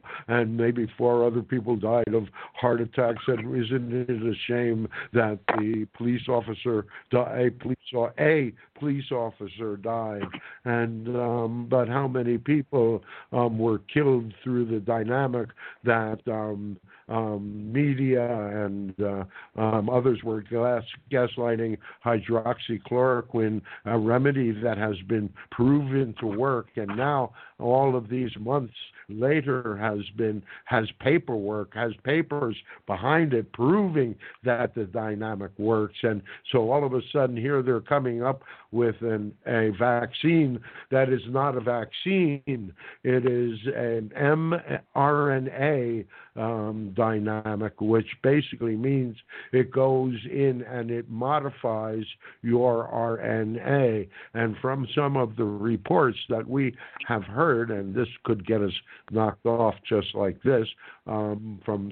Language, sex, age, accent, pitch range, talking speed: English, male, 60-79, American, 110-130 Hz, 130 wpm